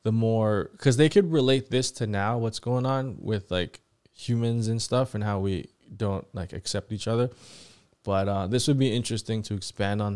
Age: 20-39